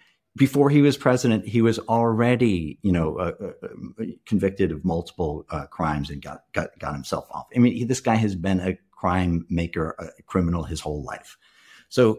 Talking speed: 185 wpm